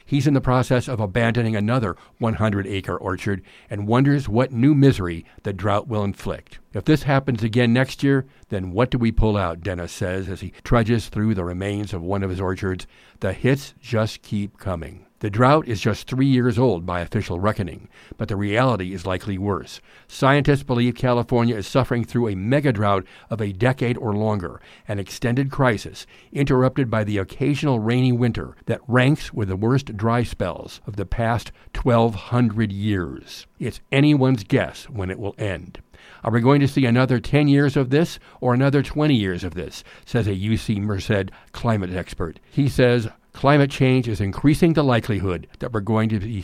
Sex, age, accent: male, 60-79, American